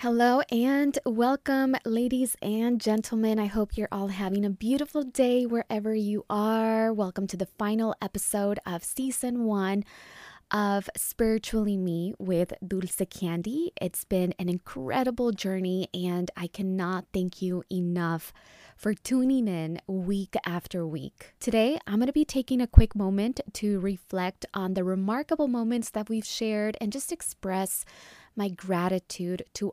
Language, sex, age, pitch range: English, female, 20-39, 175-230 Hz